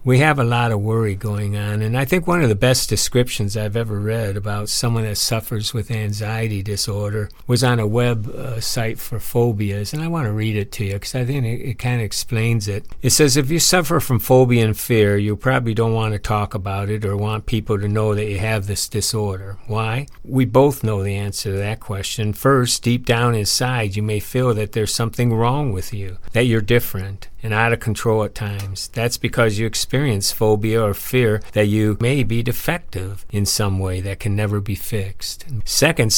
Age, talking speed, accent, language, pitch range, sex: 60-79, 215 wpm, American, English, 100-120 Hz, male